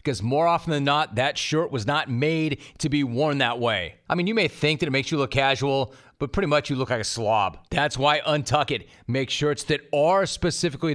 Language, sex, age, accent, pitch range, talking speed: English, male, 40-59, American, 125-150 Hz, 235 wpm